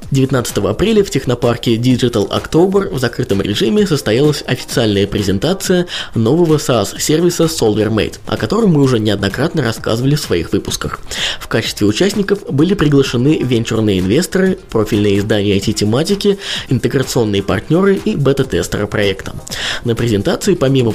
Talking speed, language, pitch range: 120 wpm, Russian, 105-160 Hz